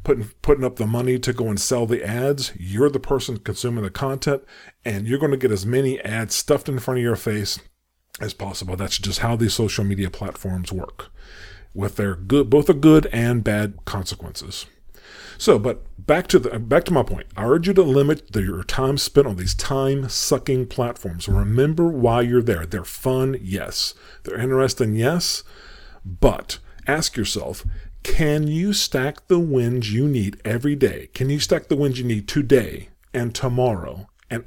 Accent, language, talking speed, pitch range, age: American, English, 185 wpm, 100-130 Hz, 40-59